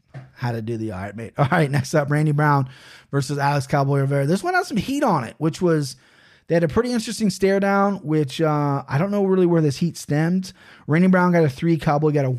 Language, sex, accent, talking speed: English, male, American, 240 wpm